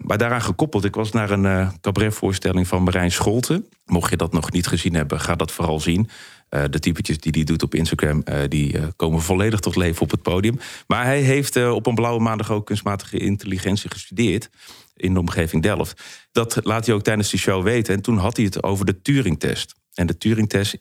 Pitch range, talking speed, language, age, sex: 90-110 Hz, 220 wpm, Dutch, 40-59, male